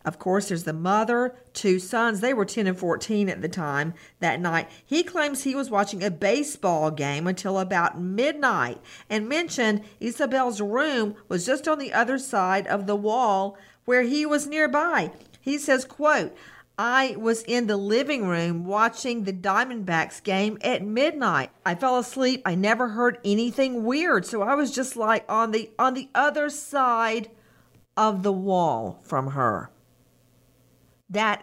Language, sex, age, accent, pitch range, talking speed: English, female, 50-69, American, 185-240 Hz, 160 wpm